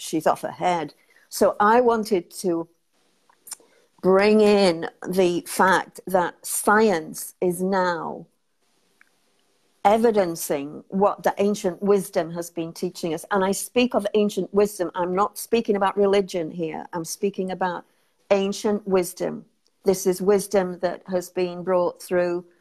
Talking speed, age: 135 wpm, 50-69